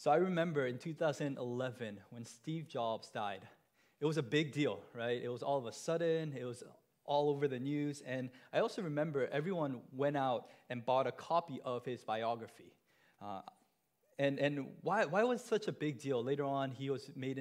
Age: 20-39